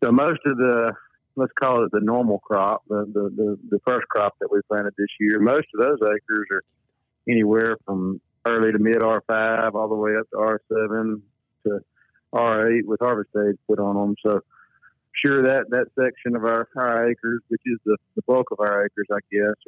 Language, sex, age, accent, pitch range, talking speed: English, male, 50-69, American, 100-115 Hz, 215 wpm